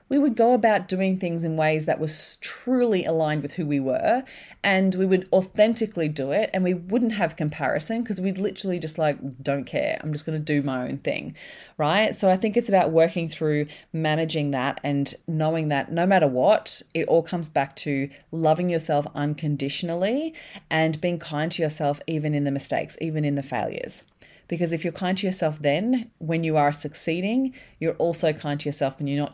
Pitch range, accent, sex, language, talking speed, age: 145-185 Hz, Australian, female, English, 200 wpm, 30-49